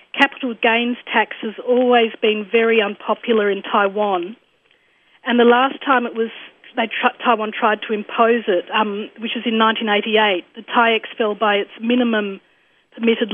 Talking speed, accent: 155 wpm, Australian